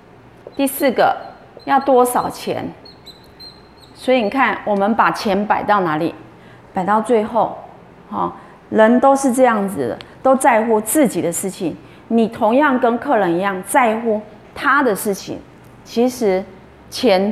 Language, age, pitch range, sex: Chinese, 20-39, 185-255 Hz, female